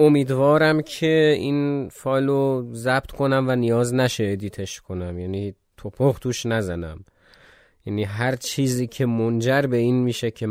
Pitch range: 105-155 Hz